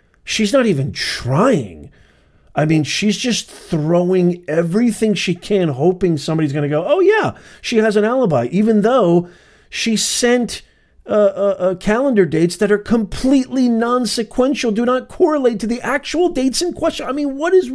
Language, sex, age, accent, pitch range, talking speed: English, male, 40-59, American, 130-210 Hz, 165 wpm